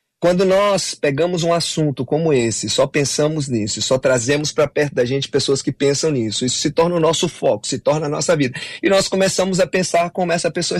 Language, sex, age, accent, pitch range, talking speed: Portuguese, male, 30-49, Brazilian, 130-170 Hz, 215 wpm